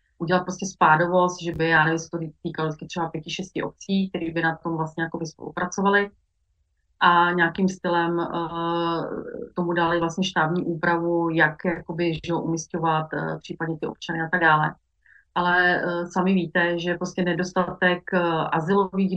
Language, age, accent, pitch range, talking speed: Czech, 30-49, native, 160-175 Hz, 155 wpm